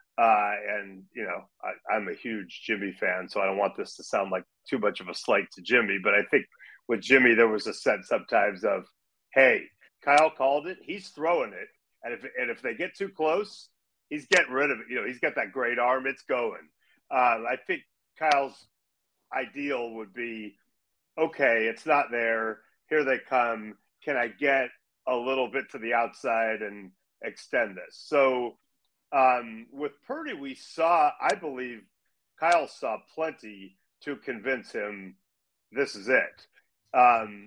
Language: English